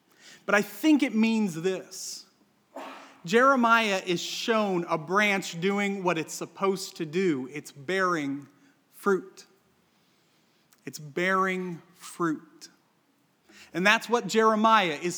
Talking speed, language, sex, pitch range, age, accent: 110 wpm, English, male, 165-205 Hz, 30-49, American